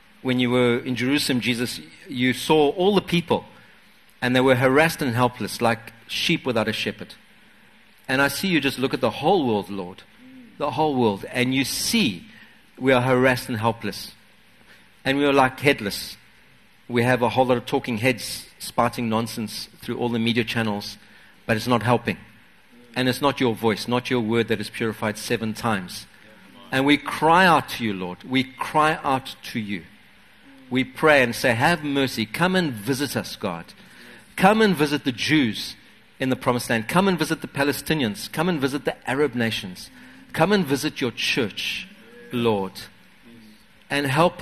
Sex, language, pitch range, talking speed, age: male, English, 115-155 Hz, 180 wpm, 50-69